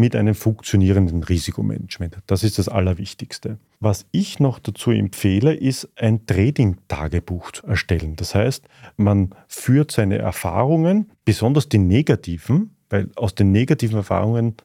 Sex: male